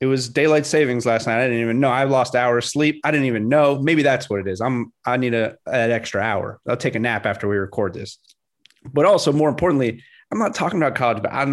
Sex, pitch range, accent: male, 115-140 Hz, American